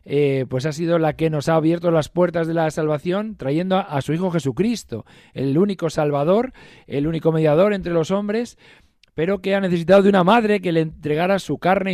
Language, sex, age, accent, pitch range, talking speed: Spanish, male, 40-59, Spanish, 140-185 Hz, 205 wpm